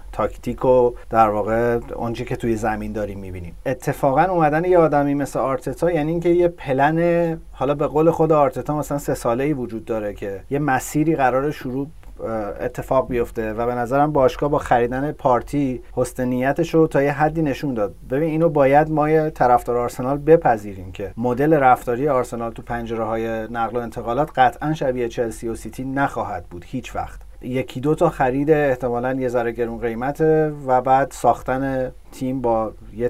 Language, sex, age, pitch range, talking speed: Persian, male, 30-49, 120-150 Hz, 165 wpm